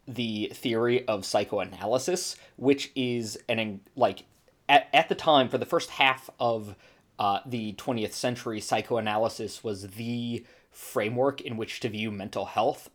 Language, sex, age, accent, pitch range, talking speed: English, male, 20-39, American, 105-135 Hz, 145 wpm